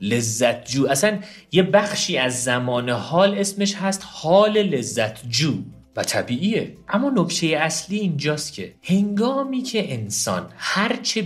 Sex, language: male, Persian